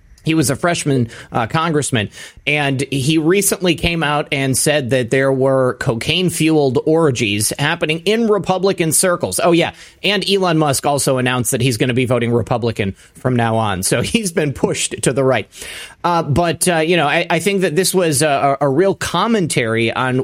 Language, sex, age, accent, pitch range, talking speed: English, male, 30-49, American, 130-165 Hz, 185 wpm